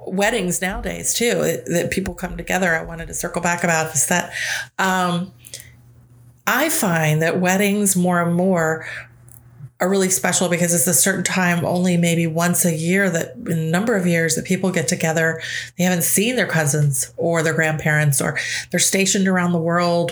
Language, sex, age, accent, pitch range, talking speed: English, female, 30-49, American, 160-195 Hz, 175 wpm